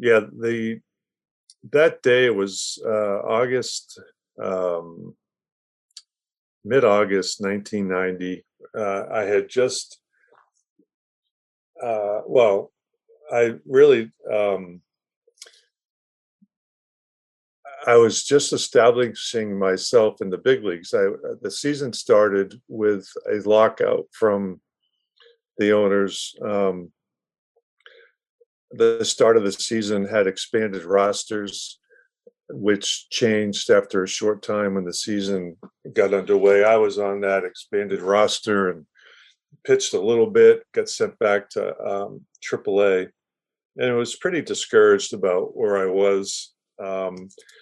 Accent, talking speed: American, 110 wpm